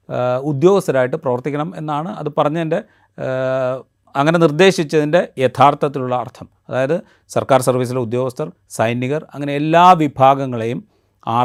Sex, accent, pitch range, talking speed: male, native, 125-155 Hz, 95 wpm